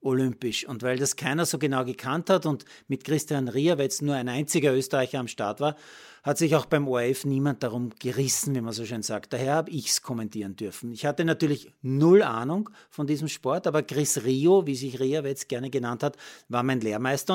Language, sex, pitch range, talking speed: German, male, 130-160 Hz, 215 wpm